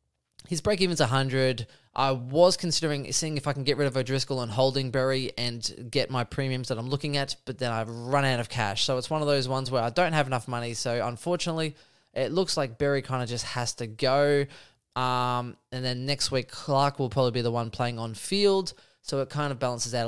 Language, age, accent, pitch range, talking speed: English, 20-39, Australian, 120-145 Hz, 225 wpm